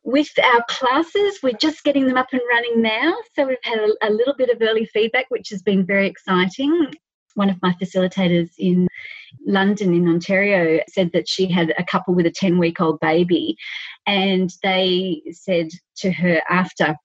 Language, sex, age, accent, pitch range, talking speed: English, female, 30-49, Australian, 175-220 Hz, 175 wpm